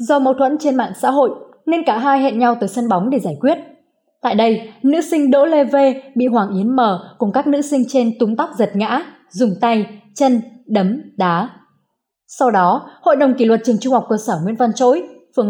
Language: Vietnamese